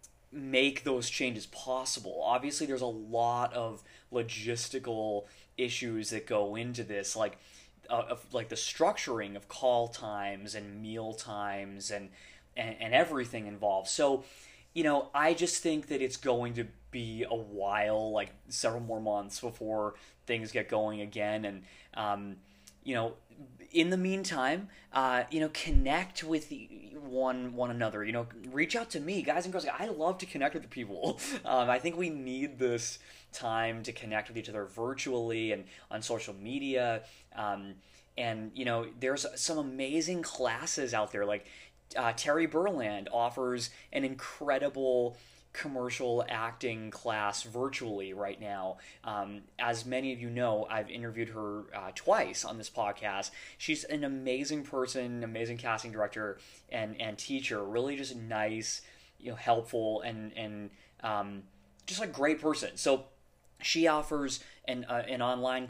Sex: male